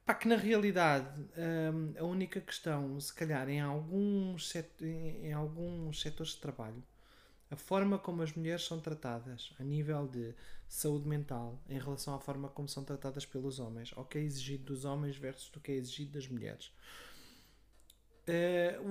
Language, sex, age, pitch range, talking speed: Portuguese, male, 20-39, 140-190 Hz, 175 wpm